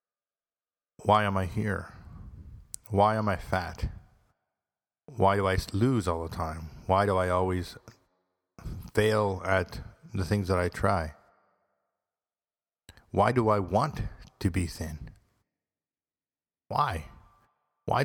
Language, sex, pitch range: English, male, 90-110 Hz